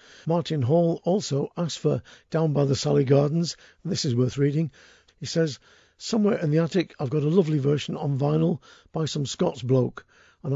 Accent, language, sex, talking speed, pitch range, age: British, English, male, 180 wpm, 135-165 Hz, 50-69